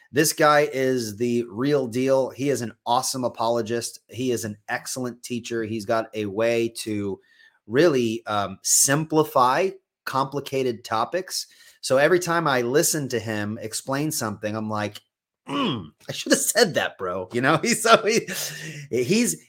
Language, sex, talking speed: English, male, 150 wpm